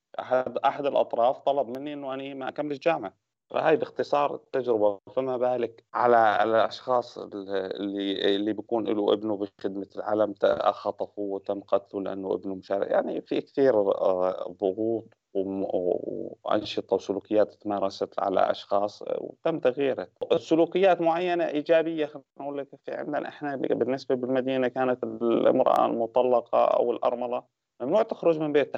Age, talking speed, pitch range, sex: 30-49, 125 wpm, 105-135 Hz, male